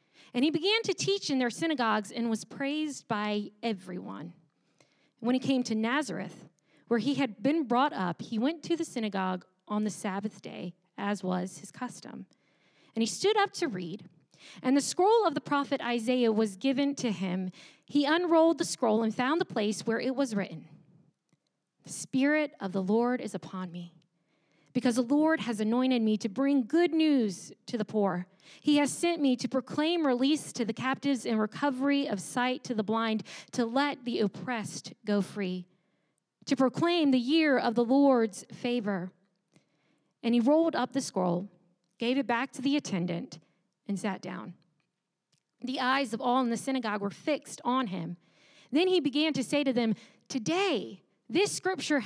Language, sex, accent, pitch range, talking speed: English, female, American, 195-280 Hz, 175 wpm